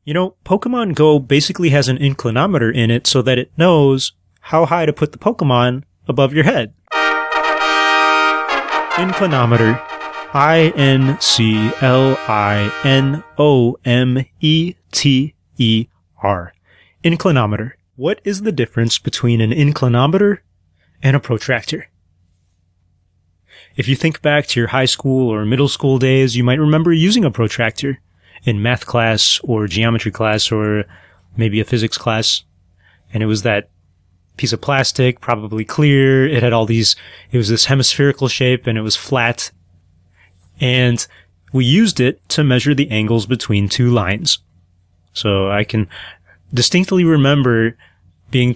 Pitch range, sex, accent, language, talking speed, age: 100-135 Hz, male, American, English, 130 wpm, 30-49